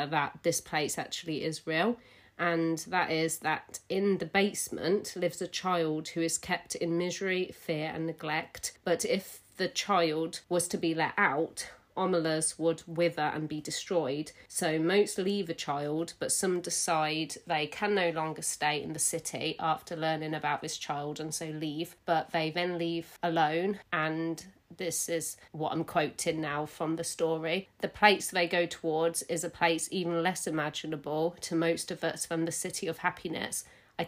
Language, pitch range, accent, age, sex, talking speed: English, 160-180 Hz, British, 30-49, female, 175 wpm